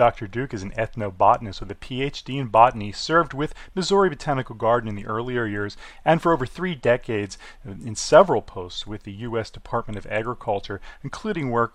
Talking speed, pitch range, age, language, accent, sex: 180 wpm, 105-130 Hz, 30-49, English, American, male